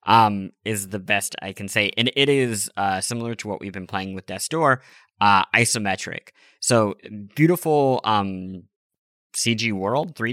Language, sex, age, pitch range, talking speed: English, male, 20-39, 100-130 Hz, 170 wpm